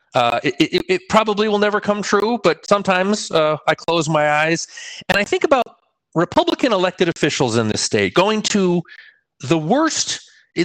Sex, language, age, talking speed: male, English, 40-59, 175 wpm